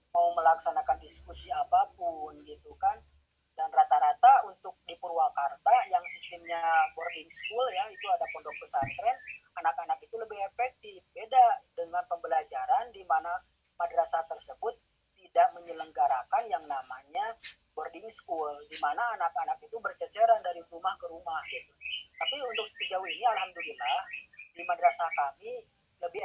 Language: Indonesian